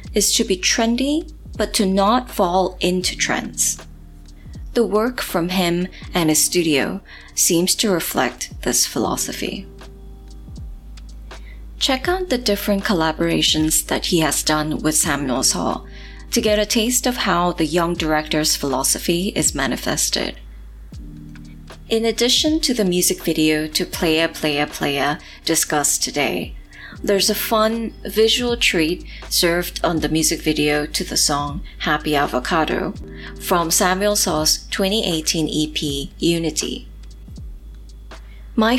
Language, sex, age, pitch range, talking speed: English, female, 20-39, 145-205 Hz, 125 wpm